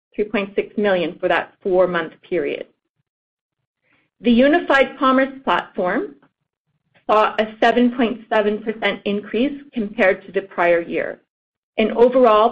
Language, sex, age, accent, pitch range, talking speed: English, female, 30-49, American, 200-240 Hz, 90 wpm